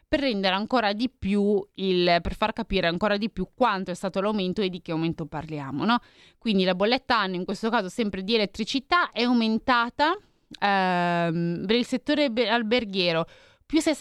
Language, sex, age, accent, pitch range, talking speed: Italian, female, 20-39, native, 180-230 Hz, 165 wpm